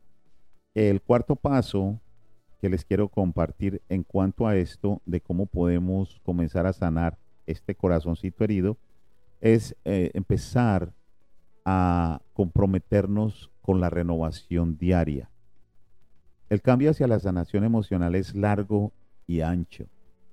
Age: 40-59